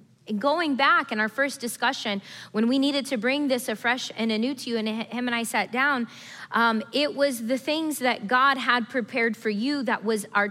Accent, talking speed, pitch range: American, 210 wpm, 220-280 Hz